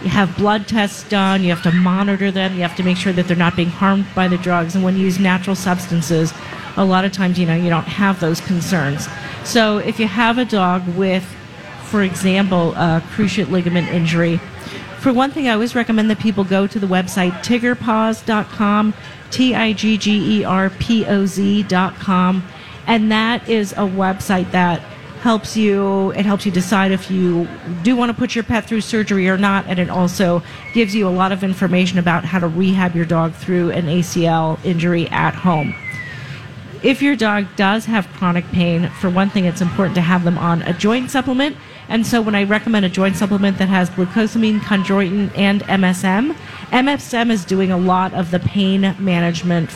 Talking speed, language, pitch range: 185 wpm, English, 175-210 Hz